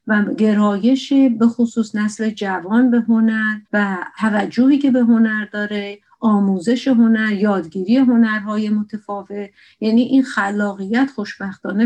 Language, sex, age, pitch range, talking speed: Persian, female, 50-69, 200-240 Hz, 115 wpm